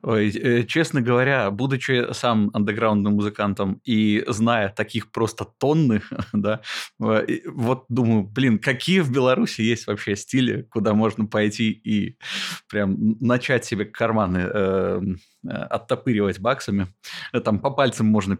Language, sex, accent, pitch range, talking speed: Russian, male, native, 105-130 Hz, 125 wpm